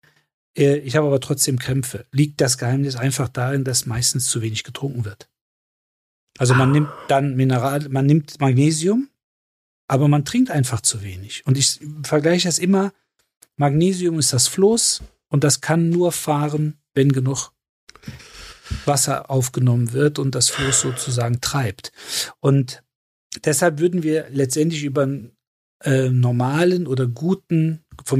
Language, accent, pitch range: German, German, 130-155 Hz